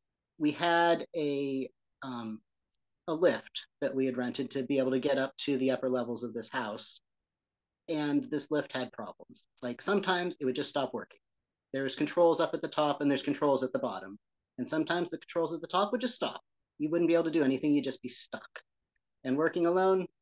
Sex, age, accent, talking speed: male, 30-49, American, 210 wpm